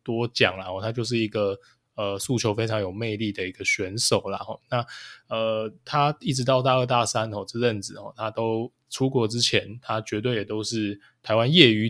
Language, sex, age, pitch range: Chinese, male, 20-39, 105-125 Hz